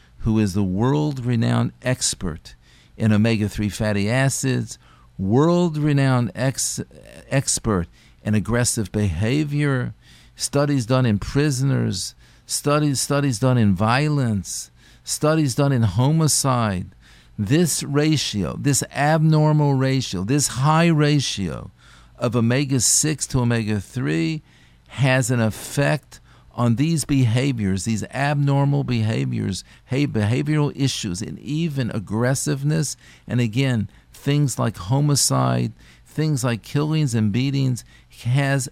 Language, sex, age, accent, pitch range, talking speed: English, male, 50-69, American, 110-140 Hz, 100 wpm